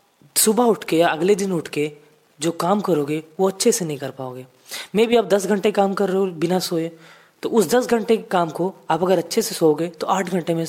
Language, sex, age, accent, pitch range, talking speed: Hindi, female, 20-39, native, 155-205 Hz, 240 wpm